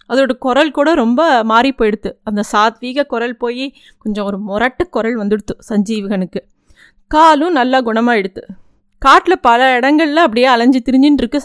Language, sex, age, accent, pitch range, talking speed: Tamil, female, 30-49, native, 225-285 Hz, 125 wpm